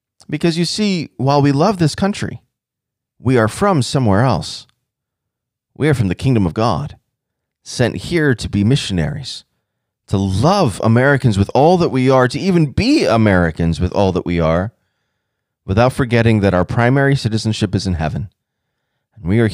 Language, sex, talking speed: English, male, 165 wpm